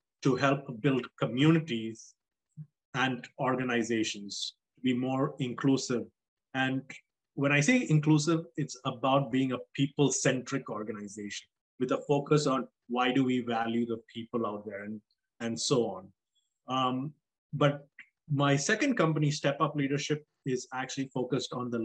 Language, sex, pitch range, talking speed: English, male, 125-145 Hz, 135 wpm